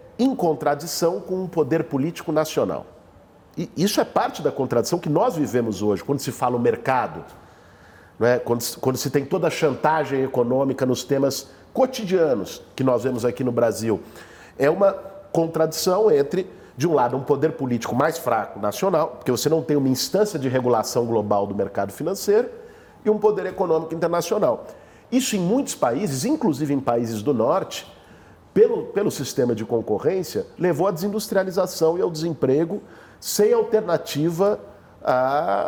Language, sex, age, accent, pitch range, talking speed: Portuguese, male, 50-69, Brazilian, 135-195 Hz, 160 wpm